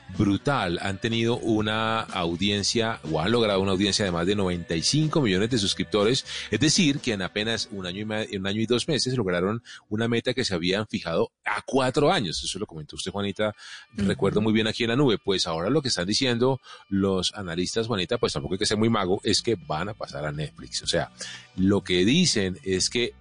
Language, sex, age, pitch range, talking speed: Spanish, male, 30-49, 95-120 Hz, 215 wpm